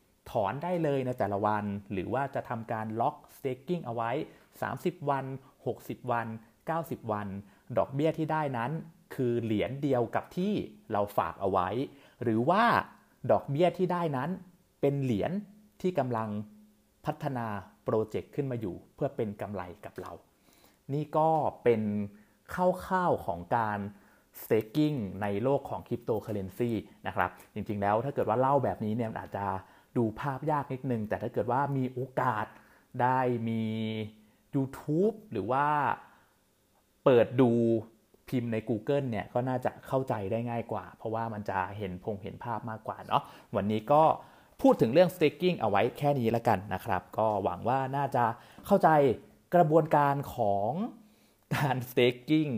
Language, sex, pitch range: Thai, male, 105-145 Hz